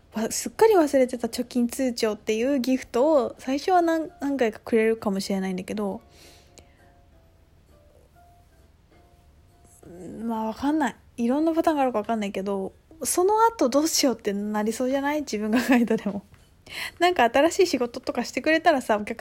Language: Japanese